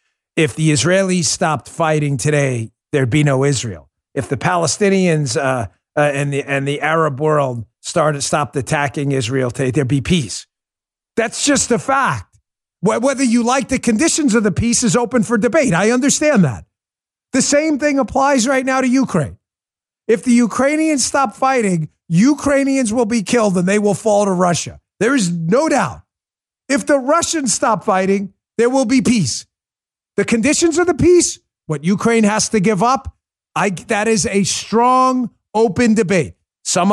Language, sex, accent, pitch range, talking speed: English, male, American, 170-265 Hz, 165 wpm